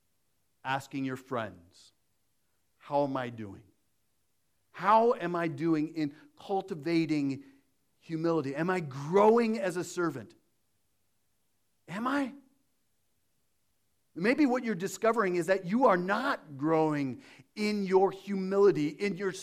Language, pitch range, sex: English, 160-260 Hz, male